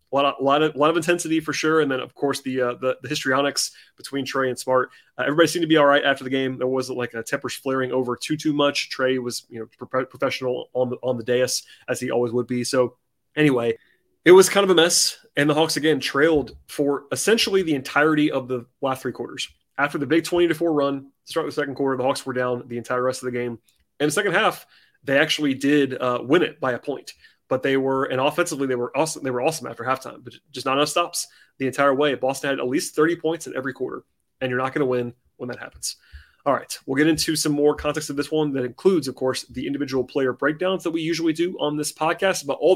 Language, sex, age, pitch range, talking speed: English, male, 30-49, 130-155 Hz, 255 wpm